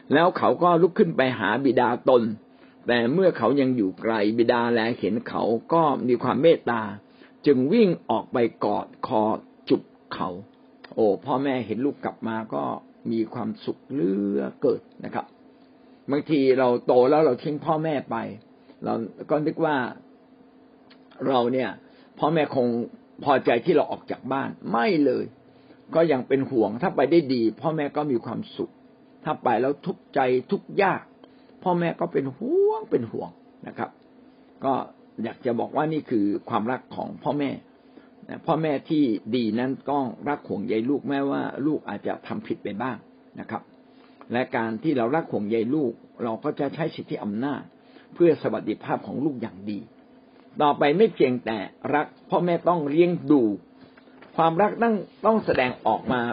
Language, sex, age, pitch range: Thai, male, 60-79, 120-175 Hz